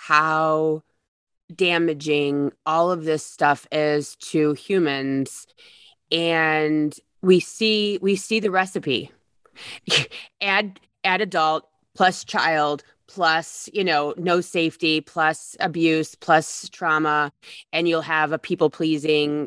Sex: female